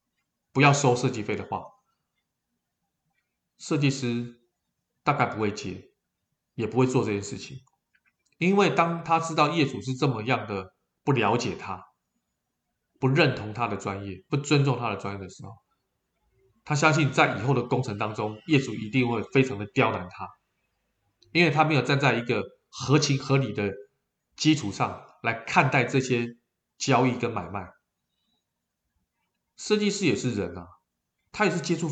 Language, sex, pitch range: Chinese, male, 105-150 Hz